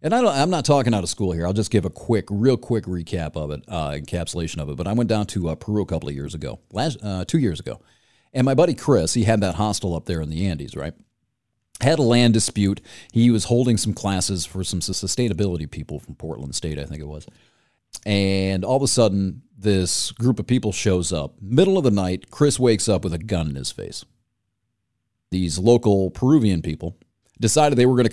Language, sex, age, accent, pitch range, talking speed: English, male, 40-59, American, 90-115 Hz, 230 wpm